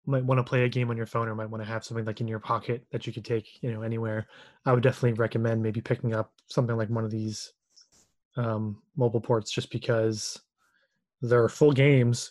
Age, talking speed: 20-39, 225 wpm